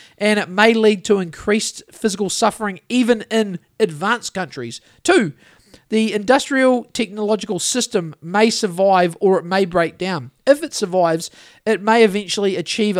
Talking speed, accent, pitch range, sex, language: 145 wpm, Australian, 175-215 Hz, male, English